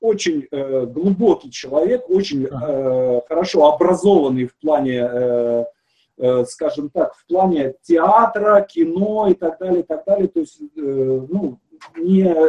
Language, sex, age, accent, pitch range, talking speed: Russian, male, 40-59, native, 150-215 Hz, 140 wpm